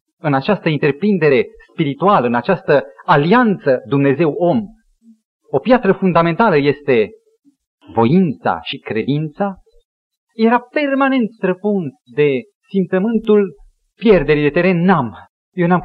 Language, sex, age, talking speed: Romanian, male, 30-49, 100 wpm